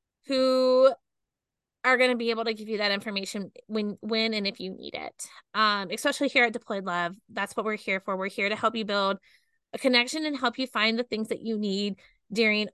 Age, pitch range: 20-39, 200-235 Hz